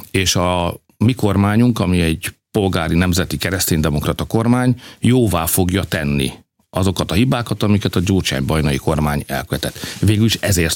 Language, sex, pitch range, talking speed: Hungarian, male, 85-115 Hz, 140 wpm